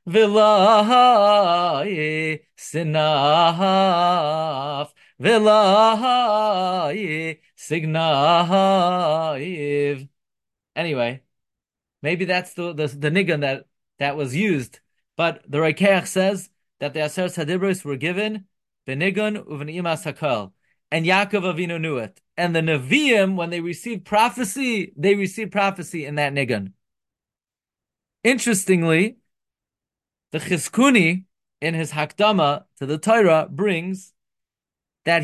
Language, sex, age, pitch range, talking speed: English, male, 30-49, 150-195 Hz, 90 wpm